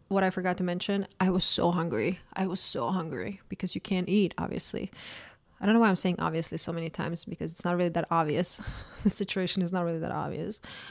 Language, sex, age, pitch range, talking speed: English, female, 20-39, 170-205 Hz, 225 wpm